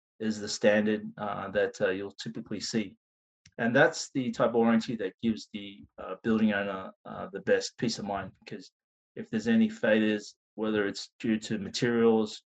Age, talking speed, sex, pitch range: 20-39, 180 wpm, male, 105-140 Hz